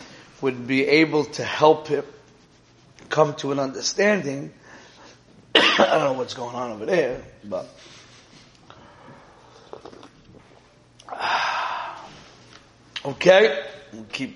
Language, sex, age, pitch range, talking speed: English, male, 30-49, 130-160 Hz, 90 wpm